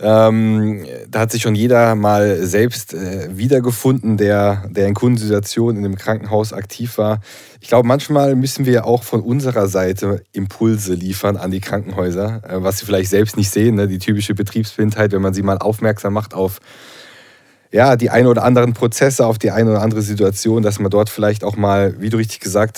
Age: 20-39